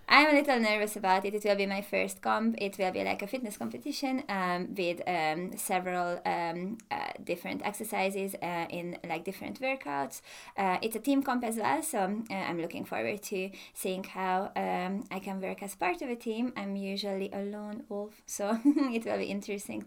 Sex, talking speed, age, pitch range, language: female, 200 wpm, 20-39, 185-220 Hz, English